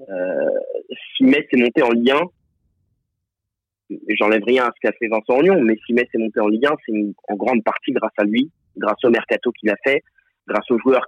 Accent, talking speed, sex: French, 210 wpm, male